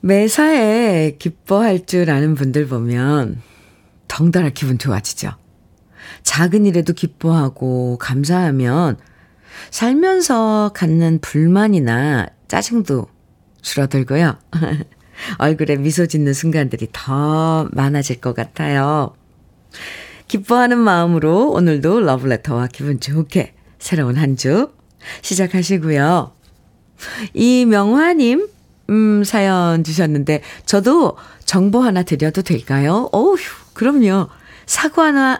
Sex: female